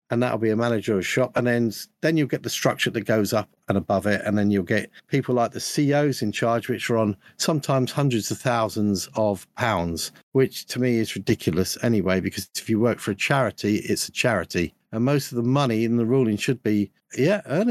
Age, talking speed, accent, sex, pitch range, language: 50-69, 230 wpm, British, male, 115-155 Hz, English